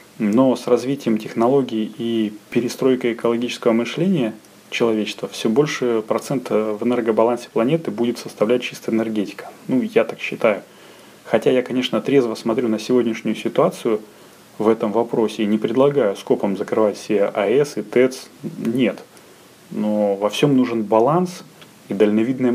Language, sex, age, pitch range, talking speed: Russian, male, 20-39, 105-120 Hz, 135 wpm